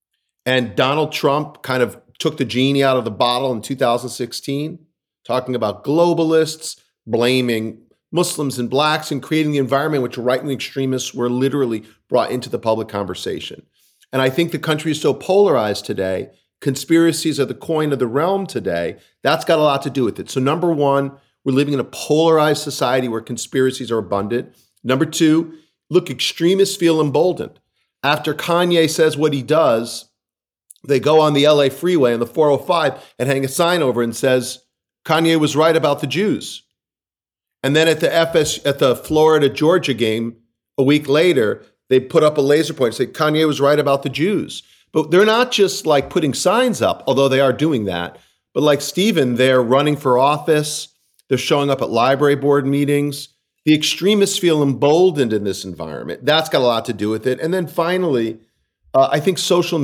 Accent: American